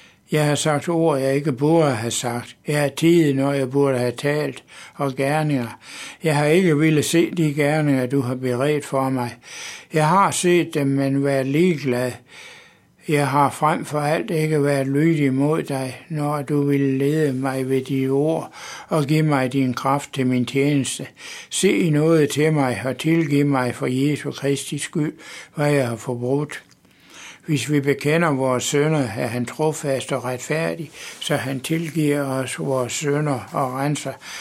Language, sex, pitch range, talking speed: Danish, male, 130-150 Hz, 170 wpm